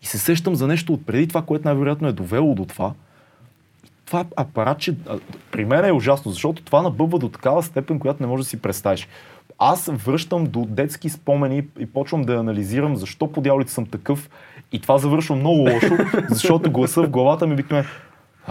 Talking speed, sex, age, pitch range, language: 190 wpm, male, 30-49, 105-150 Hz, Bulgarian